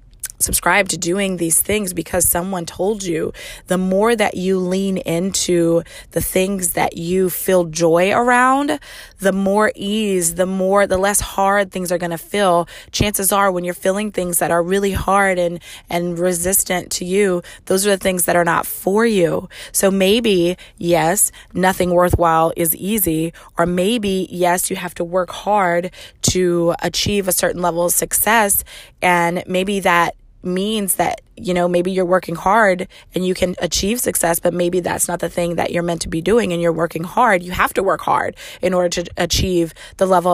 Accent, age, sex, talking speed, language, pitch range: American, 20-39, female, 185 wpm, English, 170-190 Hz